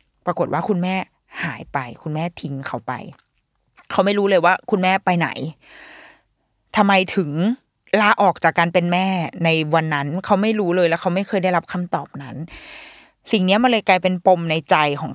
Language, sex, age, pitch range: Thai, female, 20-39, 155-205 Hz